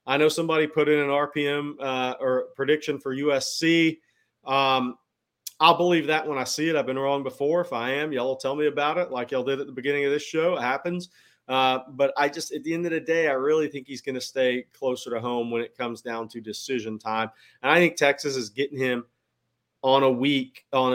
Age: 40-59